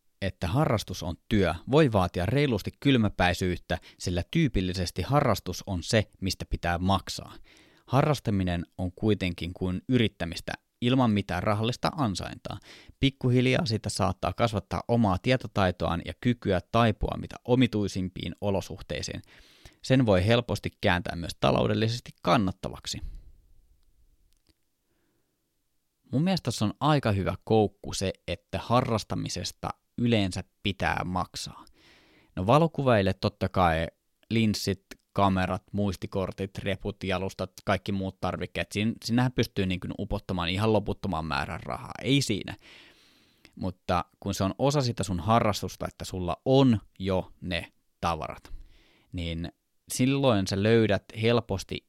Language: Finnish